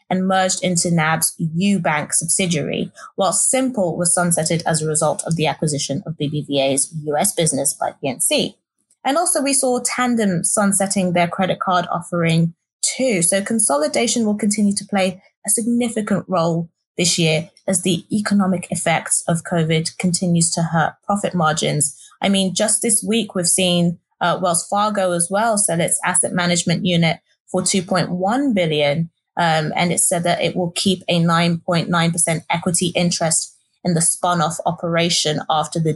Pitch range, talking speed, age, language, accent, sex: 165-205 Hz, 160 wpm, 20-39, English, British, female